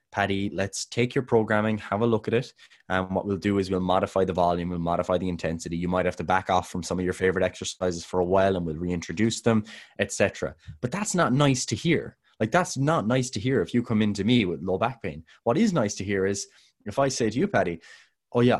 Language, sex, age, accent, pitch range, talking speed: English, male, 20-39, Irish, 95-115 Hz, 255 wpm